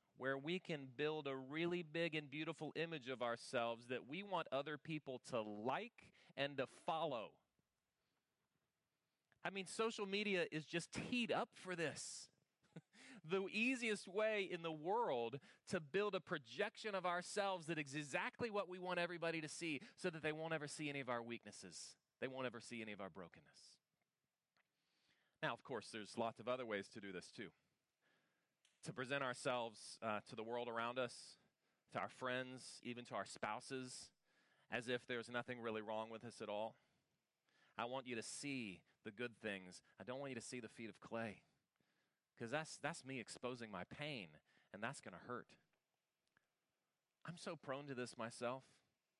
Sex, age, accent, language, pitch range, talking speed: male, 30-49, American, English, 120-165 Hz, 175 wpm